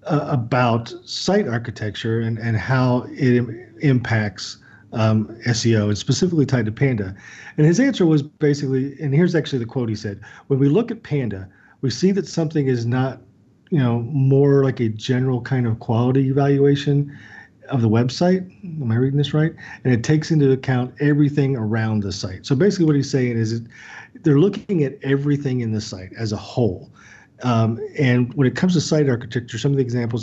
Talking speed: 185 wpm